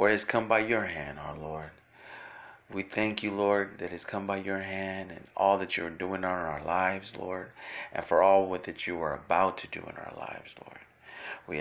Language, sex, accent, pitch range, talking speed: English, male, American, 90-110 Hz, 215 wpm